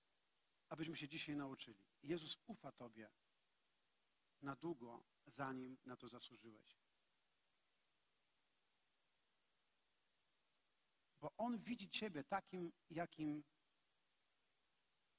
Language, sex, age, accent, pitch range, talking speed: Polish, male, 50-69, native, 130-175 Hz, 75 wpm